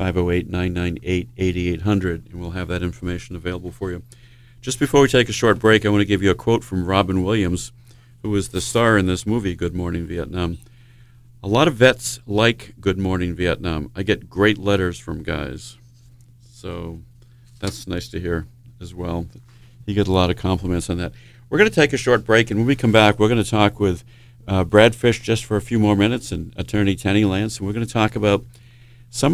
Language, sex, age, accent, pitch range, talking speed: English, male, 50-69, American, 90-120 Hz, 205 wpm